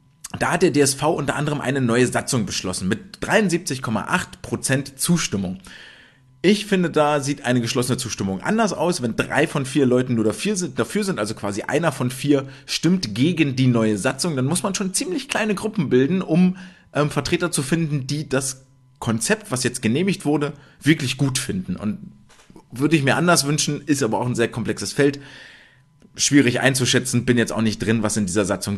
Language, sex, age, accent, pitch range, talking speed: German, male, 30-49, German, 115-155 Hz, 185 wpm